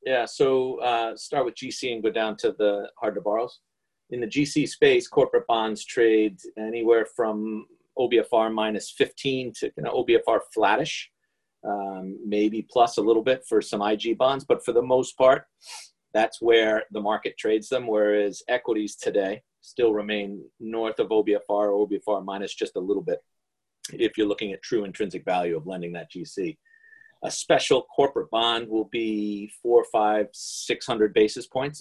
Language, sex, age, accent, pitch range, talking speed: English, male, 40-59, American, 105-130 Hz, 170 wpm